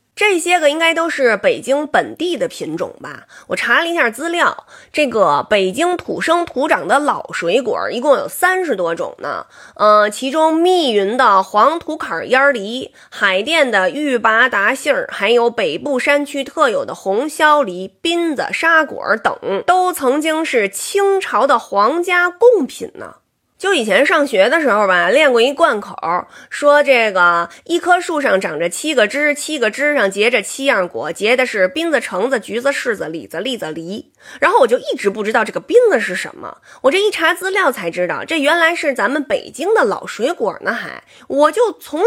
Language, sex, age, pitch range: Chinese, female, 20-39, 230-350 Hz